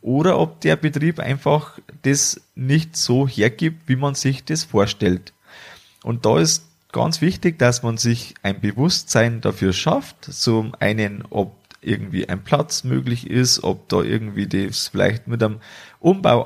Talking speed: 155 wpm